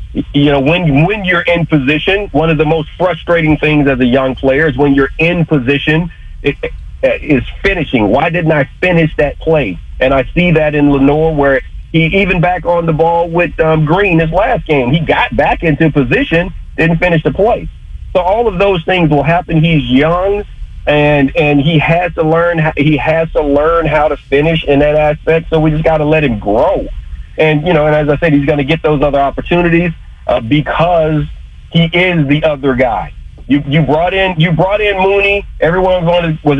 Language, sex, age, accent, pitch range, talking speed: English, male, 40-59, American, 145-175 Hz, 205 wpm